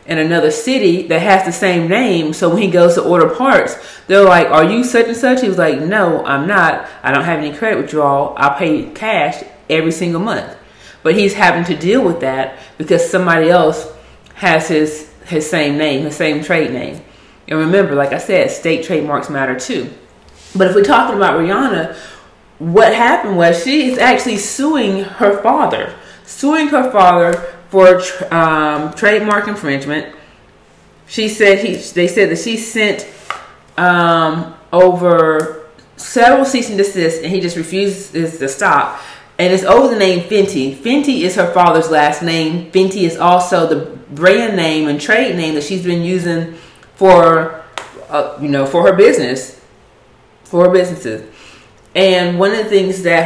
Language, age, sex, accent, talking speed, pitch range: English, 30-49, female, American, 170 wpm, 155-195 Hz